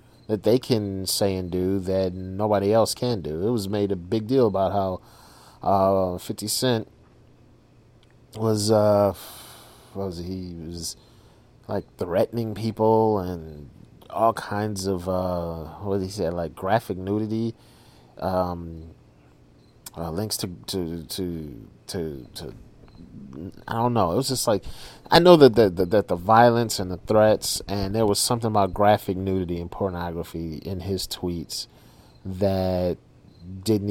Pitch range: 90-115 Hz